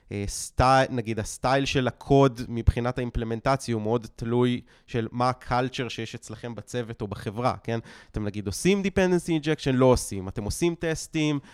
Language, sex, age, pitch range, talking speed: Hebrew, male, 20-39, 115-135 Hz, 155 wpm